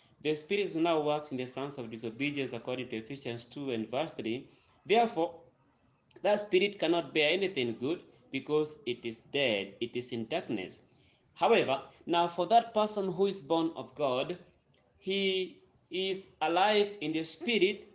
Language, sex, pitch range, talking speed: English, male, 130-180 Hz, 155 wpm